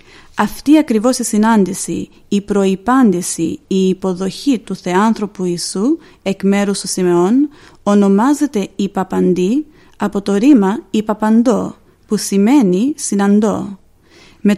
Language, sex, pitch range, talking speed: Greek, female, 195-245 Hz, 105 wpm